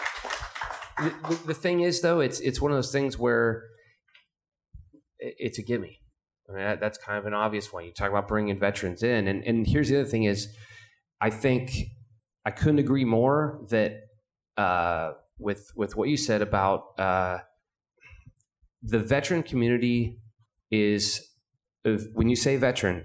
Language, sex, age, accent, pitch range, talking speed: English, male, 30-49, American, 100-125 Hz, 155 wpm